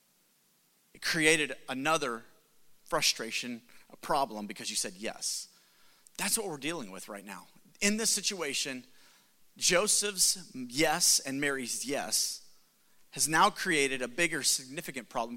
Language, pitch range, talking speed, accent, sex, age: English, 155-210 Hz, 120 wpm, American, male, 30-49